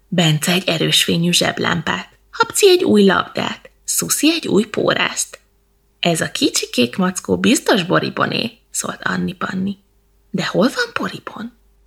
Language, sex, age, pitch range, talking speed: Hungarian, female, 20-39, 170-230 Hz, 130 wpm